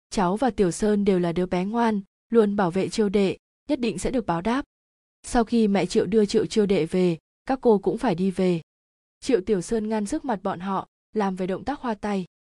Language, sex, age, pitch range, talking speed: Vietnamese, female, 20-39, 190-230 Hz, 235 wpm